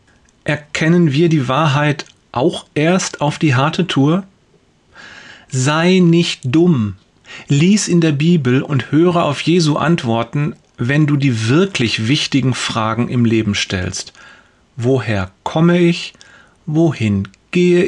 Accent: German